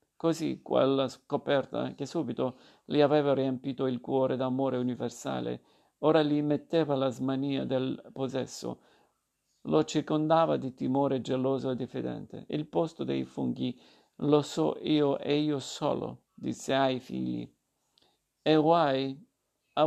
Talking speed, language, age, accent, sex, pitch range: 125 wpm, Italian, 50-69, native, male, 130-155 Hz